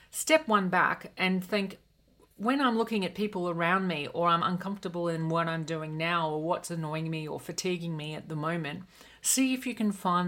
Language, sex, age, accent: English, female, 40-59, Australian